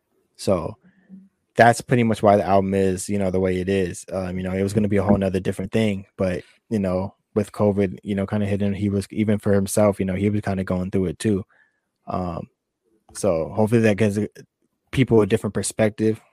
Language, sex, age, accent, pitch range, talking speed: English, male, 20-39, American, 100-110 Hz, 225 wpm